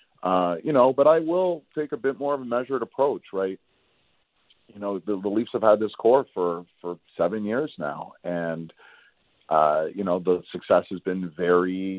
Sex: male